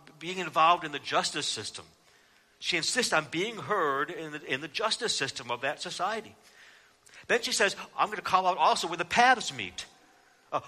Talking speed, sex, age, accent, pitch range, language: 185 wpm, male, 60-79, American, 160-200 Hz, English